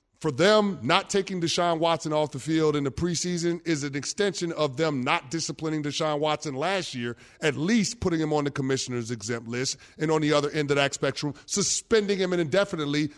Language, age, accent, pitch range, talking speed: English, 30-49, American, 135-170 Hz, 200 wpm